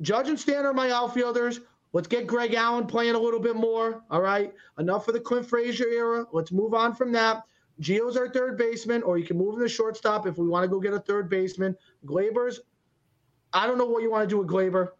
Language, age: English, 30-49